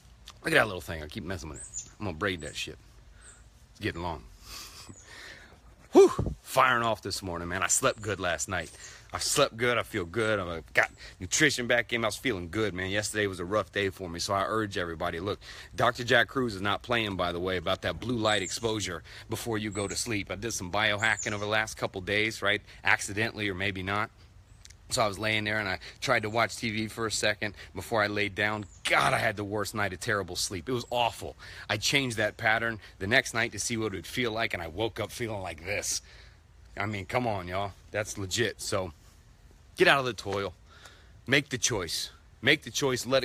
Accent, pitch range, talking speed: American, 95-115 Hz, 225 wpm